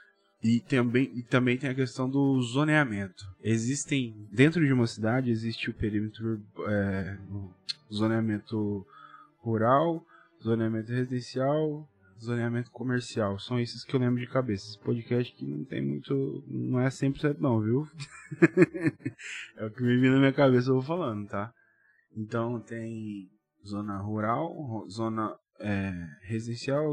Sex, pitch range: male, 110-135 Hz